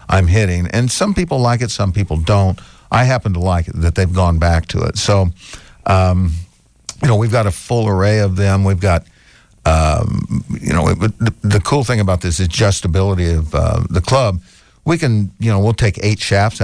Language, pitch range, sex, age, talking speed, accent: English, 85-105 Hz, male, 60-79, 205 wpm, American